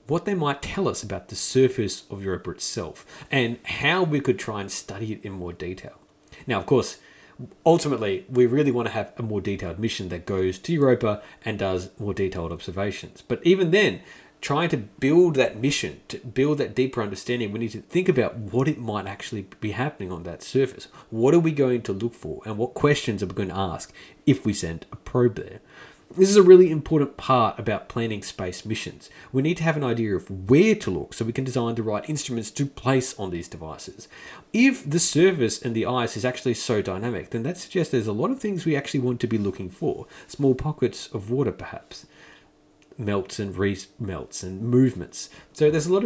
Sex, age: male, 30-49